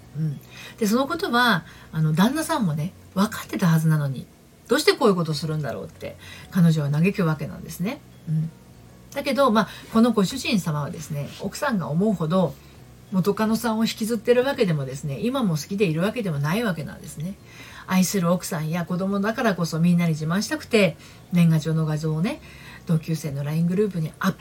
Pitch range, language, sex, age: 155-225 Hz, Japanese, female, 40-59